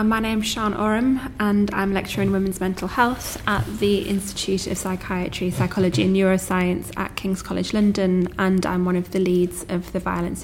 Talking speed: 195 wpm